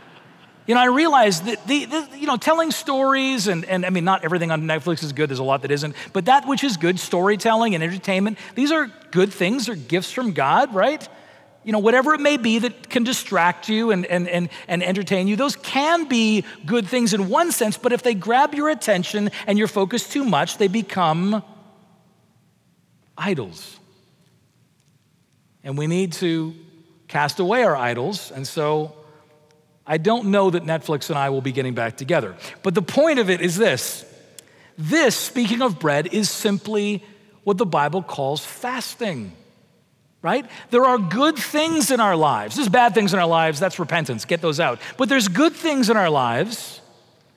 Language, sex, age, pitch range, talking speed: English, male, 40-59, 170-245 Hz, 185 wpm